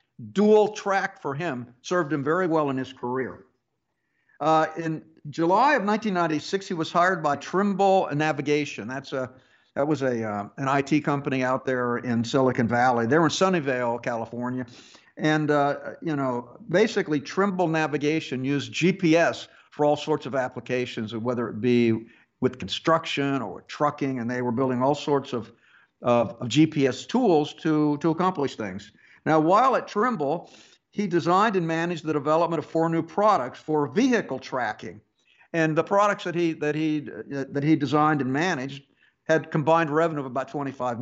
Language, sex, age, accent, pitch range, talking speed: English, male, 60-79, American, 125-165 Hz, 165 wpm